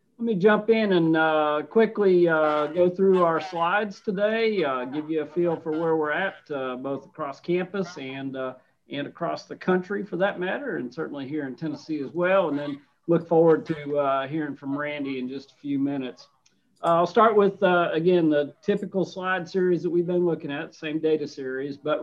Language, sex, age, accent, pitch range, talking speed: English, male, 50-69, American, 145-180 Hz, 200 wpm